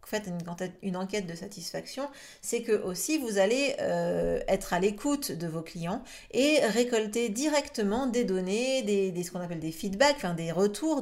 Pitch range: 180-240 Hz